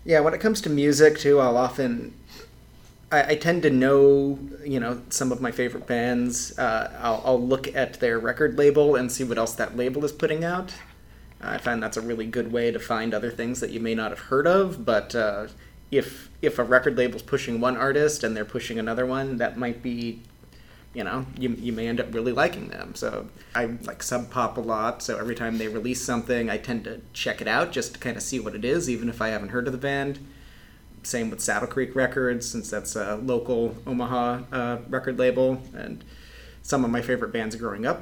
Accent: American